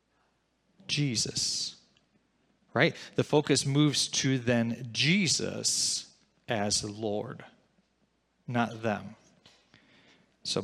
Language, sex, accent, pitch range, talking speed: English, male, American, 120-145 Hz, 80 wpm